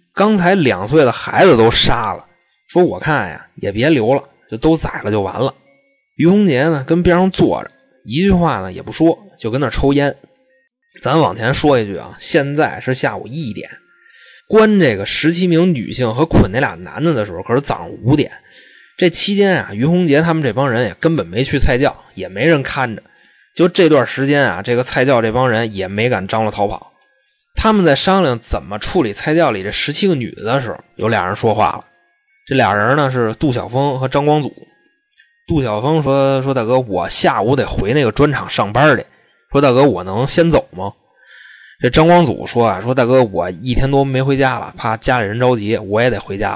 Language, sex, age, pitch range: Chinese, male, 20-39, 115-165 Hz